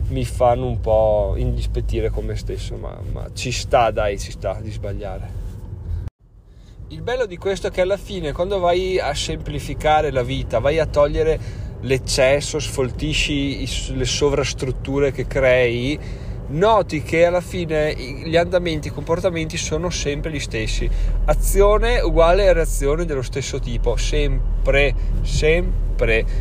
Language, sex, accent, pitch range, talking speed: Italian, male, native, 105-140 Hz, 140 wpm